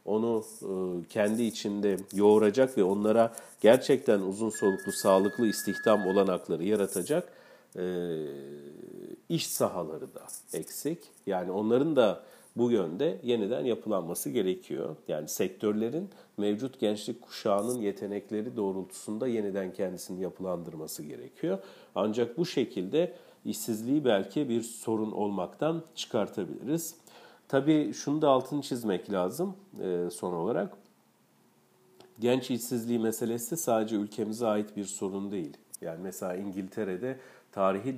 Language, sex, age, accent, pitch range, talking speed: Turkish, male, 40-59, native, 95-120 Hz, 105 wpm